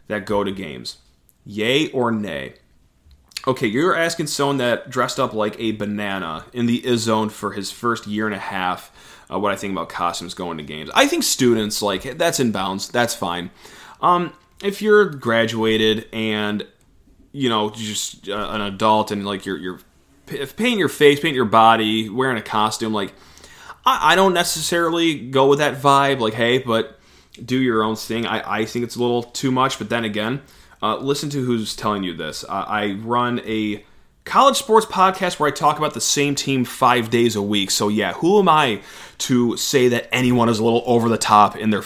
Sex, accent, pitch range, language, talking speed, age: male, American, 105-130 Hz, English, 200 wpm, 20-39